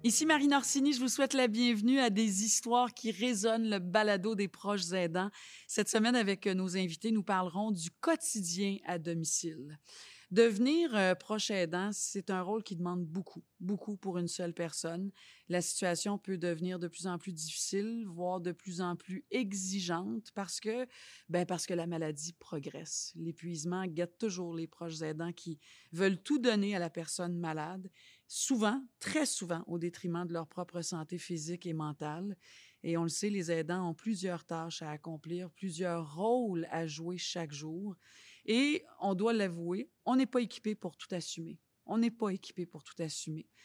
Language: French